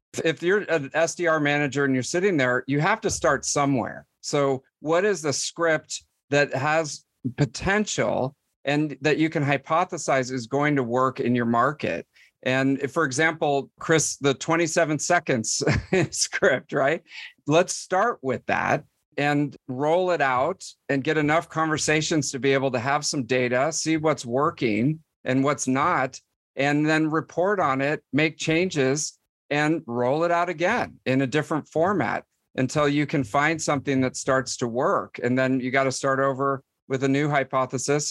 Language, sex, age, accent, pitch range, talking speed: English, male, 50-69, American, 130-155 Hz, 165 wpm